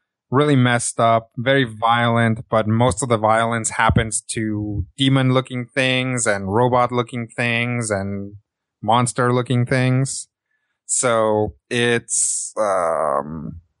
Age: 20-39